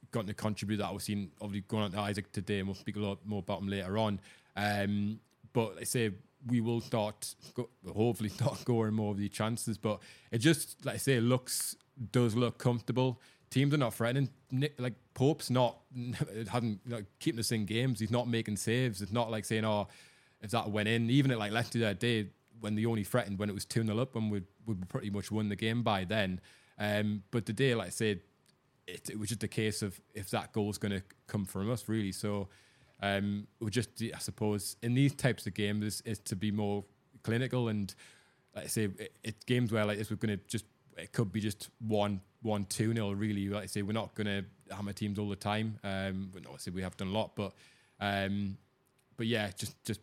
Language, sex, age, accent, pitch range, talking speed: English, male, 20-39, British, 100-120 Hz, 225 wpm